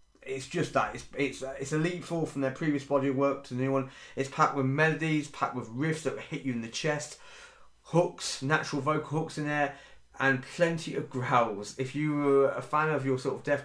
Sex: male